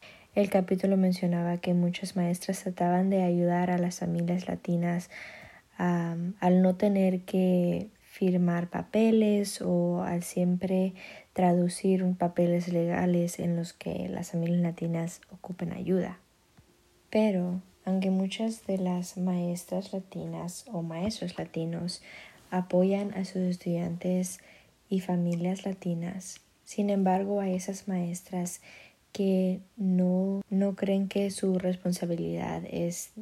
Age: 20-39